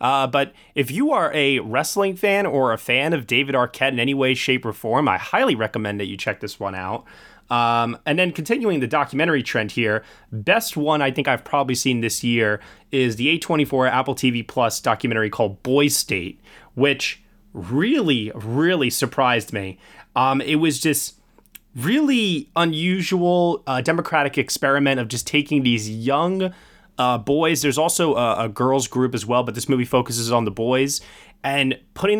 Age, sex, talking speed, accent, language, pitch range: 20-39, male, 175 wpm, American, English, 120-160 Hz